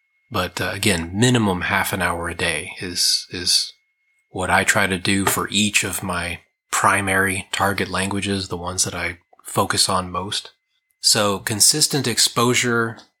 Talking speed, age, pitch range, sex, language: 150 wpm, 30-49, 95-120 Hz, male, English